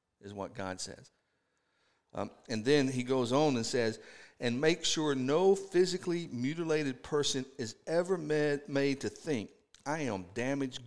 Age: 50-69